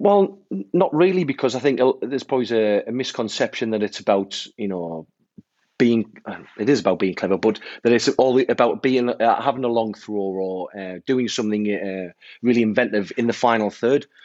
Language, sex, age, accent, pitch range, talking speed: English, male, 30-49, British, 95-125 Hz, 180 wpm